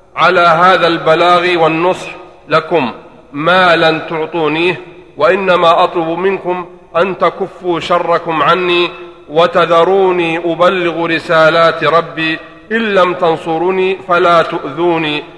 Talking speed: 95 wpm